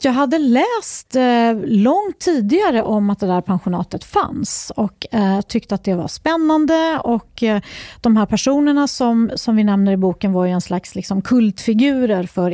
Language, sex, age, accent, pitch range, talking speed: Swedish, female, 40-59, native, 195-250 Hz, 175 wpm